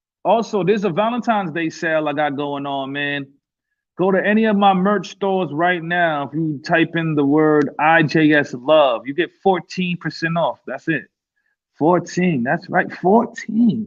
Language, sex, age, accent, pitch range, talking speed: English, male, 30-49, American, 115-165 Hz, 165 wpm